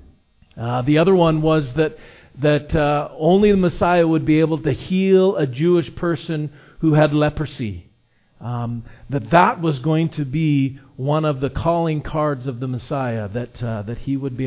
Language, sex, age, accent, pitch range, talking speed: English, male, 40-59, American, 135-165 Hz, 180 wpm